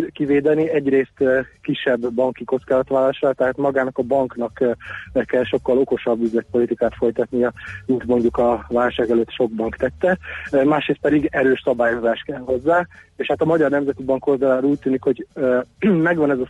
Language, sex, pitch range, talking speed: Hungarian, male, 120-140 Hz, 140 wpm